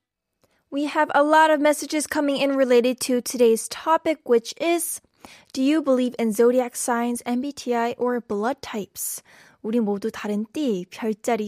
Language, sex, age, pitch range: Korean, female, 10-29, 235-295 Hz